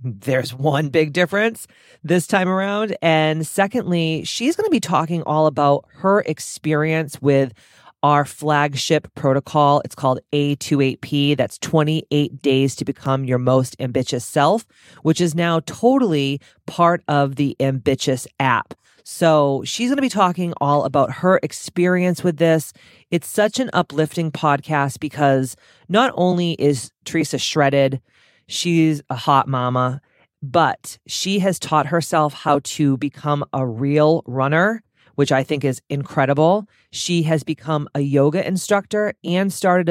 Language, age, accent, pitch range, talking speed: English, 40-59, American, 140-170 Hz, 140 wpm